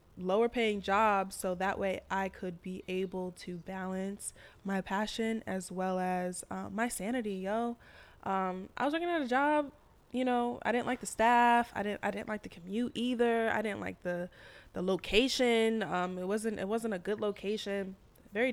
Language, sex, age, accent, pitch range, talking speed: English, female, 10-29, American, 185-235 Hz, 190 wpm